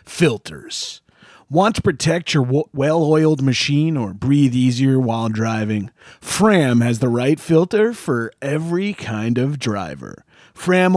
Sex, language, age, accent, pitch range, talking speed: male, English, 30-49, American, 130-185 Hz, 125 wpm